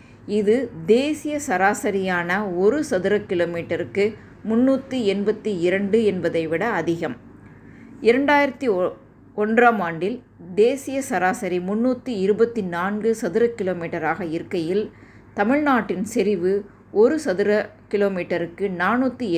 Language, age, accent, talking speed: Tamil, 20-39, native, 85 wpm